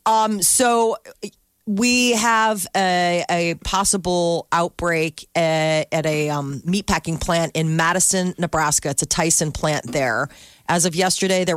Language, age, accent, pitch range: Japanese, 40-59, American, 155-185 Hz